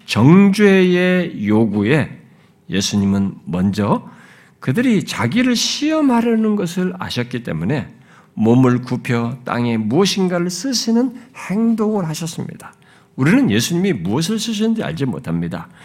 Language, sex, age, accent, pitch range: Korean, male, 50-69, native, 125-205 Hz